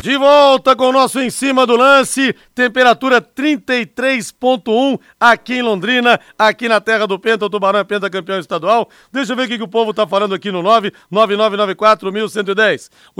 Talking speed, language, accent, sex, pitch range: 175 wpm, Portuguese, Brazilian, male, 200-240 Hz